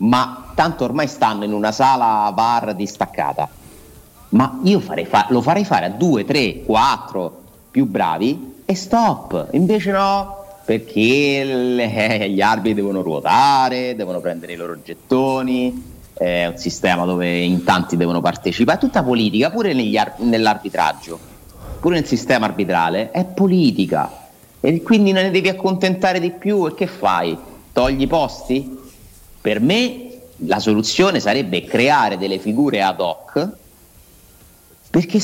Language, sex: Italian, male